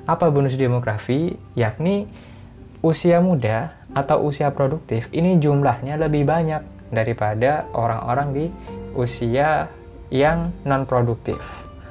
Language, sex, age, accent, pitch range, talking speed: Indonesian, male, 20-39, native, 115-140 Hz, 95 wpm